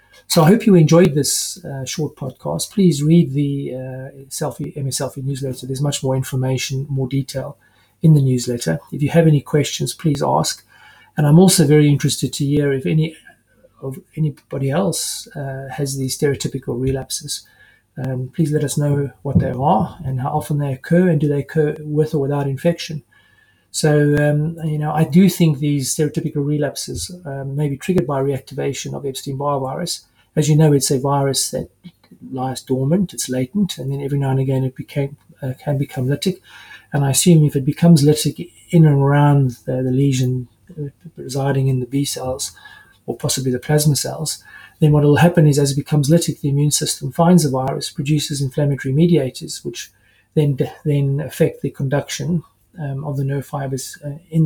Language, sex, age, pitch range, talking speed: English, male, 30-49, 135-155 Hz, 185 wpm